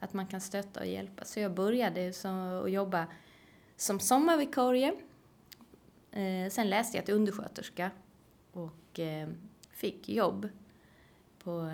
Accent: native